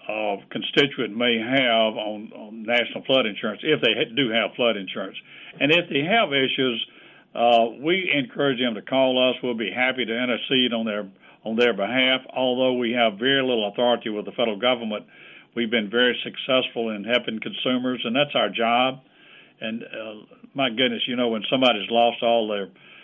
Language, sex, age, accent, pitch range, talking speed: English, male, 60-79, American, 115-130 Hz, 180 wpm